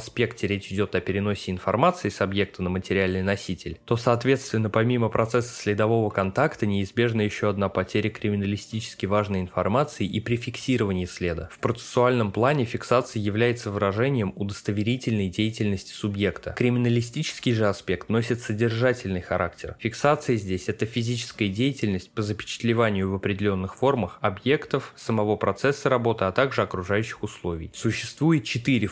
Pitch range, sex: 100-120 Hz, male